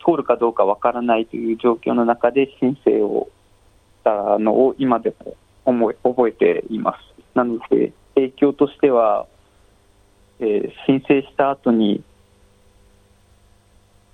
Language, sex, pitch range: Japanese, male, 100-125 Hz